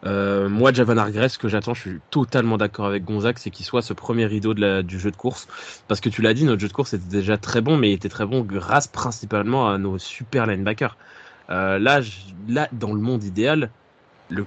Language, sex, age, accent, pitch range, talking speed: French, male, 20-39, French, 100-125 Hz, 230 wpm